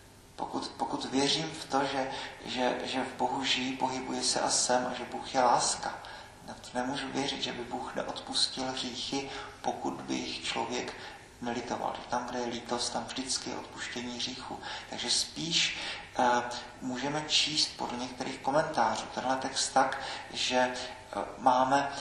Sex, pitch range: male, 125-140 Hz